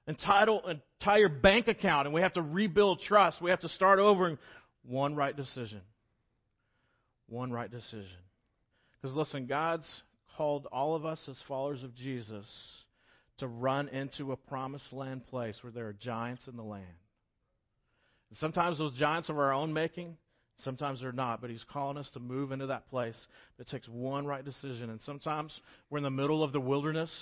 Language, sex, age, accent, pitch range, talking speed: English, male, 40-59, American, 120-165 Hz, 180 wpm